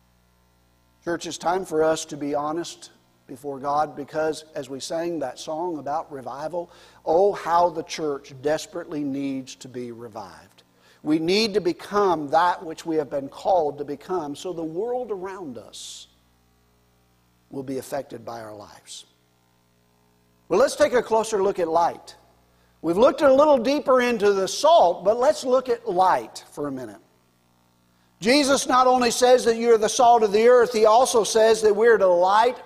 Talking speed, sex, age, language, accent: 175 wpm, male, 50-69, English, American